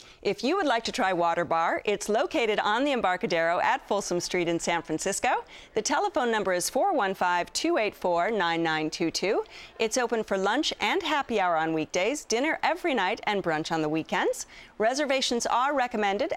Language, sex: English, female